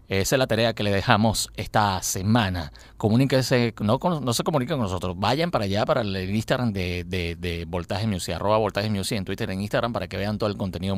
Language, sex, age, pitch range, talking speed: Spanish, male, 30-49, 90-115 Hz, 215 wpm